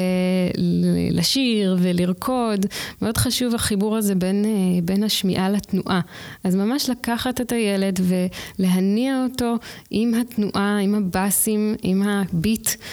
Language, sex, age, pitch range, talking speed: Hebrew, female, 20-39, 180-220 Hz, 105 wpm